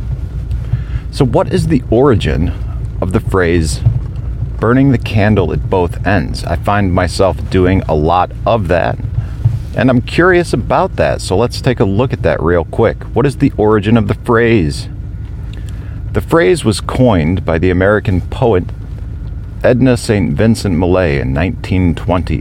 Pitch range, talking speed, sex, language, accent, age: 90-115 Hz, 155 wpm, male, English, American, 50-69